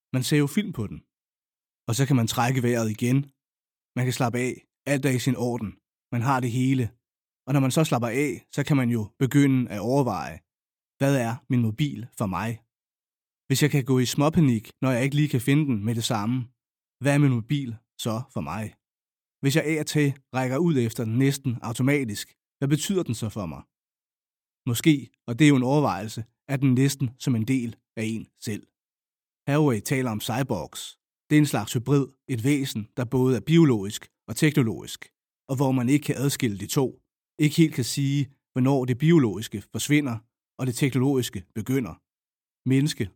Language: Danish